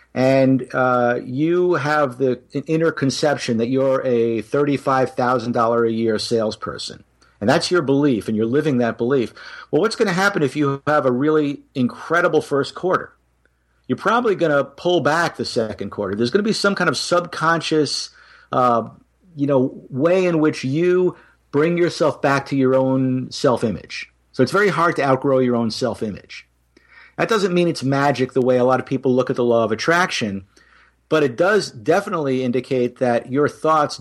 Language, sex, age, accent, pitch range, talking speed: English, male, 50-69, American, 125-155 Hz, 180 wpm